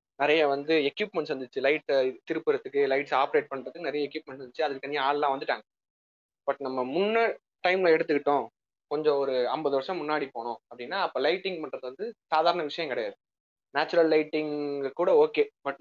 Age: 20-39